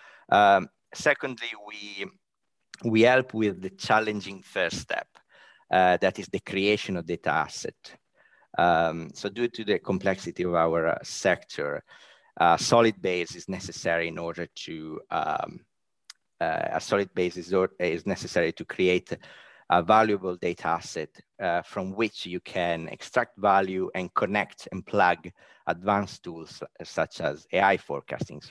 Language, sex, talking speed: English, male, 145 wpm